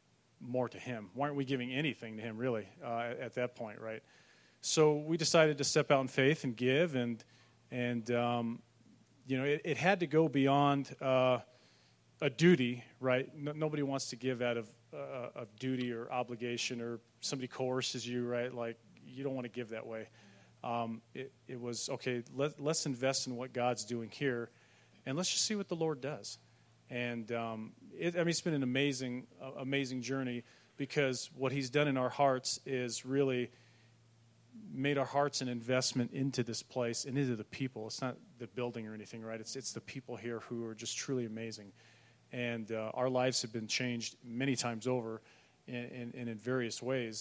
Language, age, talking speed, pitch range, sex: English, 40-59, 195 wpm, 115-135 Hz, male